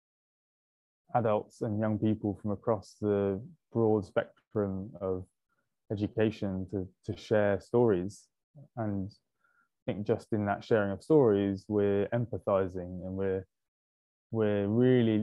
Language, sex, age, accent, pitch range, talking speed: English, male, 20-39, British, 95-110 Hz, 120 wpm